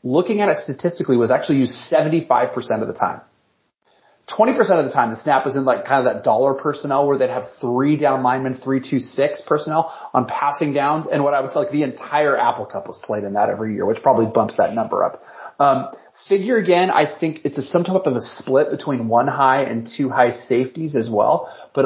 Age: 30-49